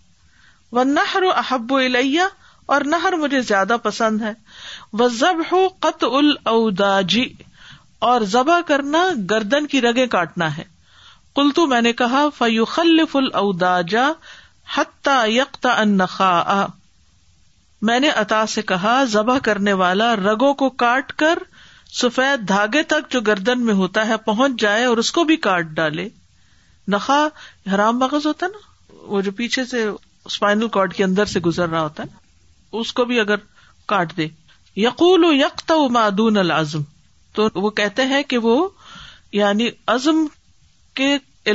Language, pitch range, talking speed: Urdu, 195-275 Hz, 135 wpm